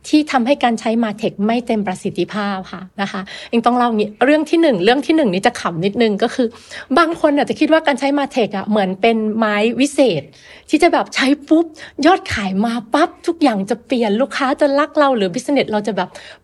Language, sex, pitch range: Thai, female, 210-275 Hz